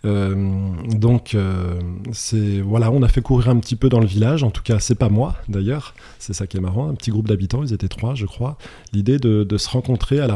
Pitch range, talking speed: 95-120 Hz, 250 wpm